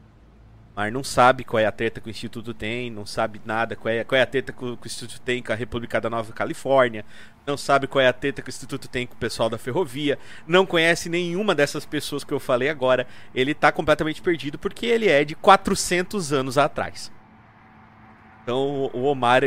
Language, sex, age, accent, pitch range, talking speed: Portuguese, male, 30-49, Brazilian, 115-145 Hz, 210 wpm